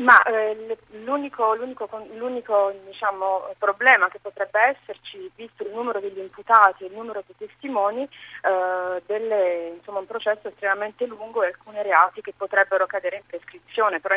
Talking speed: 145 wpm